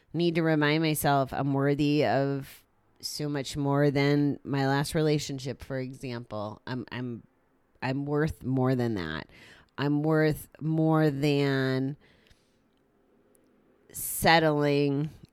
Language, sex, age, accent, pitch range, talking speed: English, female, 30-49, American, 125-150 Hz, 110 wpm